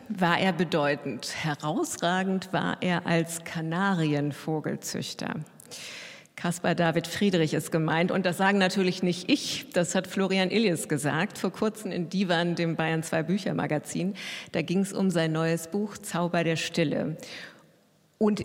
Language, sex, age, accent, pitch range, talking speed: German, female, 50-69, German, 165-205 Hz, 145 wpm